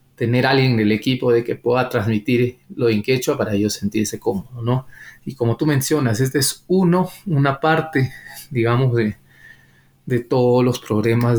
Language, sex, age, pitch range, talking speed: Spanish, male, 20-39, 110-125 Hz, 170 wpm